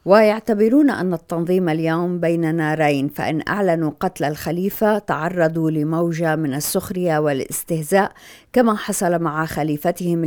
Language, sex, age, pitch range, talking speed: Arabic, female, 50-69, 155-185 Hz, 110 wpm